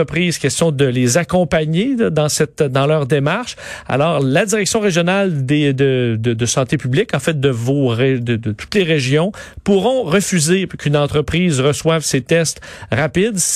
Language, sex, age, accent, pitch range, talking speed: French, male, 40-59, Canadian, 135-170 Hz, 160 wpm